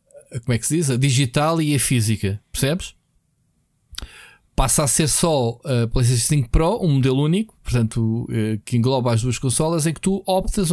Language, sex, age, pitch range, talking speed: Portuguese, male, 20-39, 120-155 Hz, 180 wpm